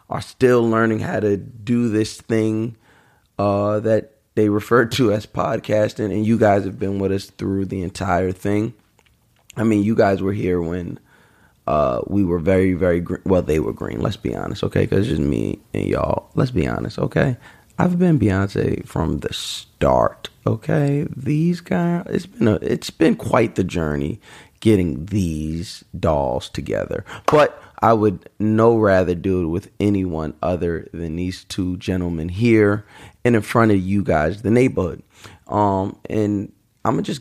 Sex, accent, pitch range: male, American, 90-110 Hz